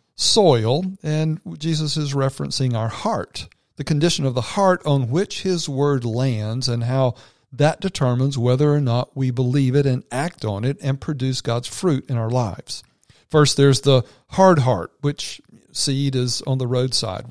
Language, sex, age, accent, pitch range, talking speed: English, male, 50-69, American, 125-145 Hz, 170 wpm